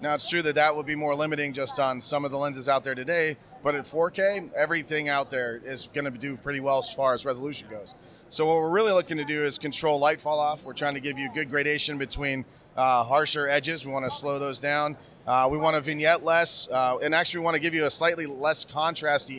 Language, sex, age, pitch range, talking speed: English, male, 30-49, 135-155 Hz, 240 wpm